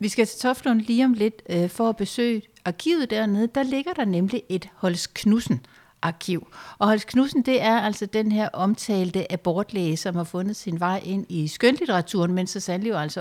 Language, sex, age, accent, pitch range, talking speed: Danish, female, 60-79, native, 175-230 Hz, 185 wpm